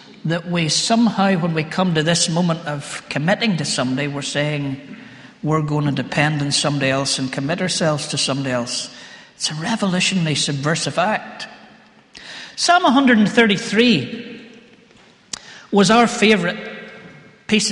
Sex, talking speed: male, 130 wpm